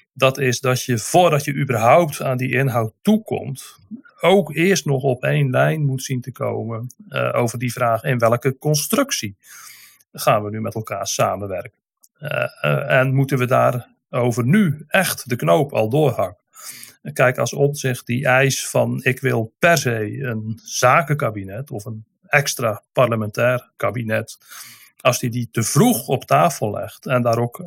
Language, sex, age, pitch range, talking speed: Dutch, male, 40-59, 115-140 Hz, 170 wpm